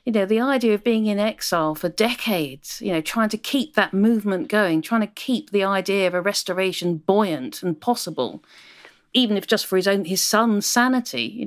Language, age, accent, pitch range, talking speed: English, 40-59, British, 180-220 Hz, 205 wpm